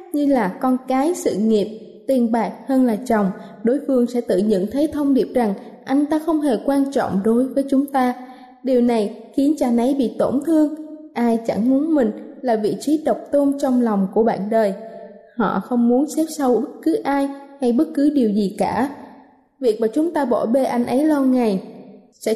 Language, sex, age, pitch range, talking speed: Vietnamese, female, 20-39, 220-285 Hz, 205 wpm